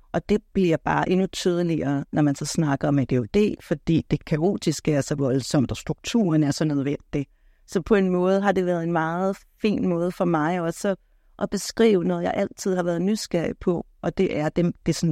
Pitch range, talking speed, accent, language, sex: 155-195 Hz, 205 wpm, native, Danish, female